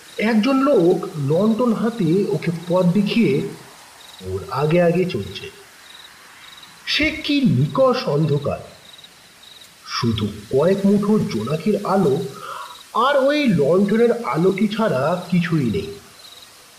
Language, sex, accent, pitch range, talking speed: Bengali, male, native, 175-235 Hz, 40 wpm